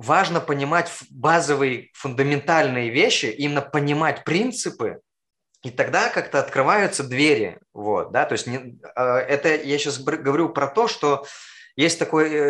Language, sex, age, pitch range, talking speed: Russian, male, 20-39, 120-150 Hz, 130 wpm